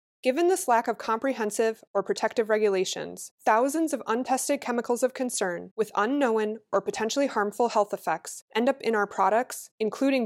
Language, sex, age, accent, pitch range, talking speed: English, female, 20-39, American, 185-245 Hz, 160 wpm